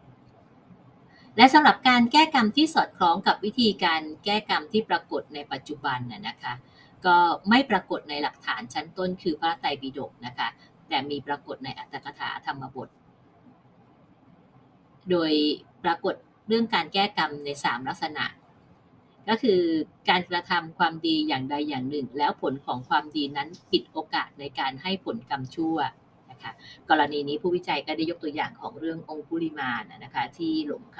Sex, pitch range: female, 140-185 Hz